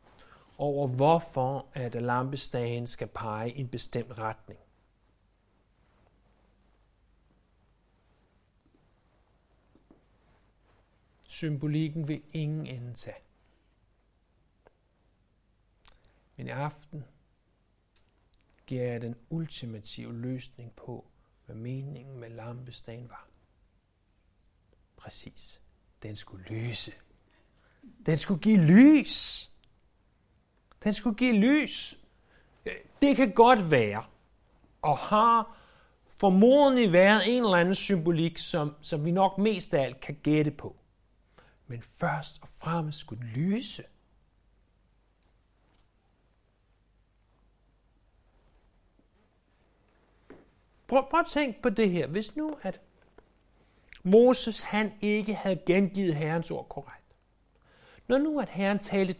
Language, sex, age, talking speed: Danish, male, 60-79, 90 wpm